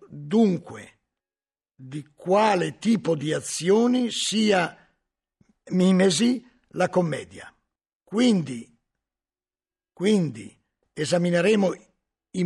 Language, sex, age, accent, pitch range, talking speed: Italian, male, 50-69, native, 155-225 Hz, 65 wpm